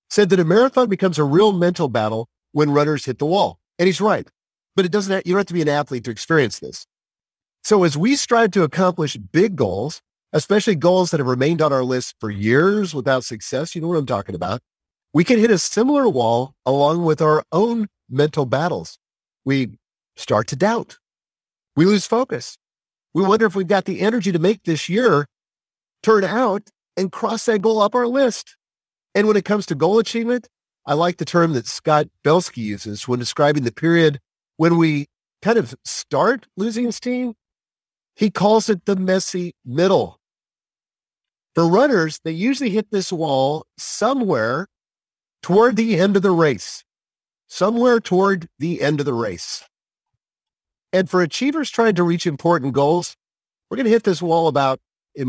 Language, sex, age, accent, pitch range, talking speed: English, male, 50-69, American, 145-210 Hz, 180 wpm